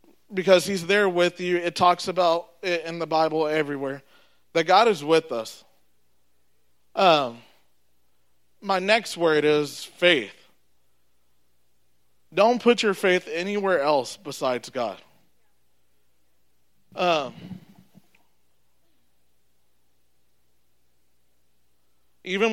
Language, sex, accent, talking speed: English, male, American, 90 wpm